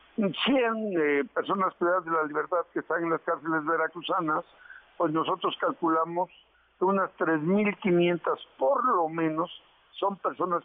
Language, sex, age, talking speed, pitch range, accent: Spanish, male, 50-69, 135 wpm, 160-200 Hz, Mexican